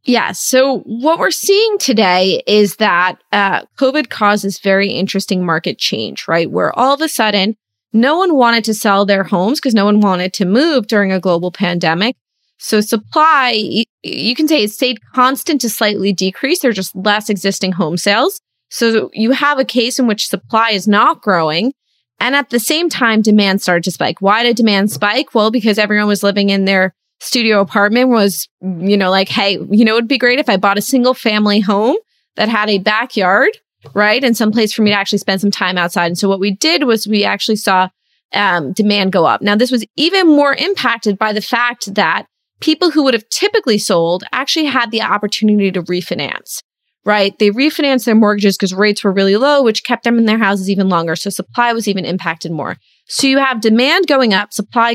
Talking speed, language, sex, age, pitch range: 205 wpm, English, female, 20-39, 195-245 Hz